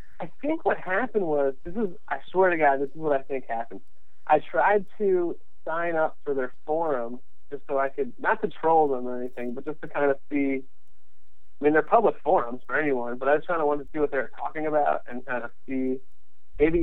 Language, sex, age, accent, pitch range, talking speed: English, male, 30-49, American, 125-150 Hz, 235 wpm